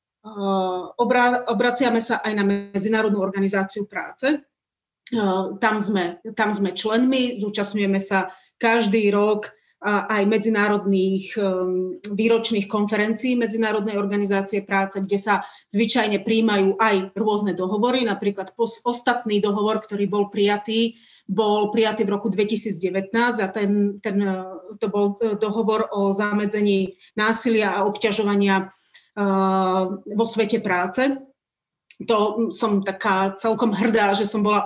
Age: 30-49